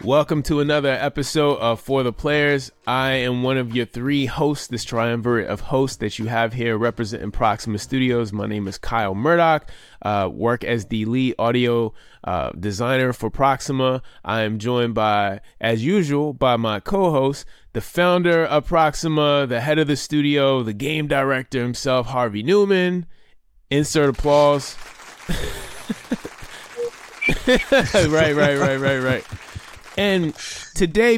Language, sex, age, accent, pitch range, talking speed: English, male, 20-39, American, 120-160 Hz, 140 wpm